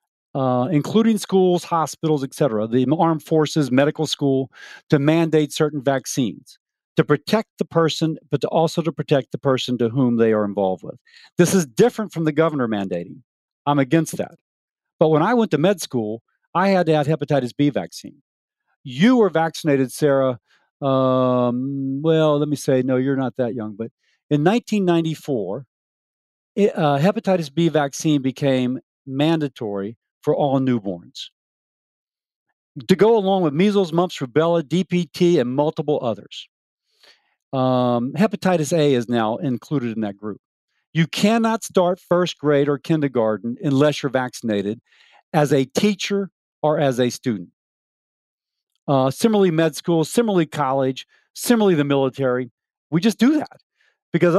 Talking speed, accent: 145 wpm, American